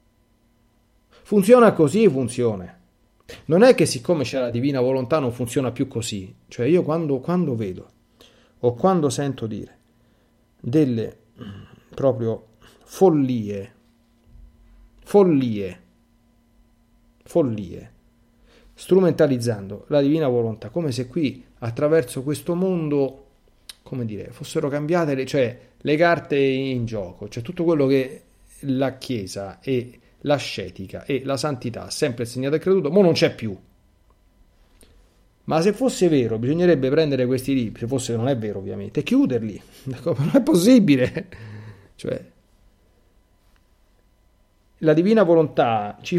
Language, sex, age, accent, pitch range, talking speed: Italian, male, 40-59, native, 110-155 Hz, 120 wpm